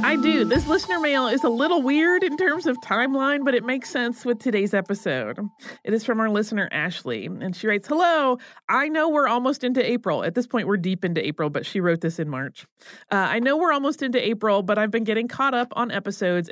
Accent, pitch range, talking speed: American, 205-265 Hz, 235 wpm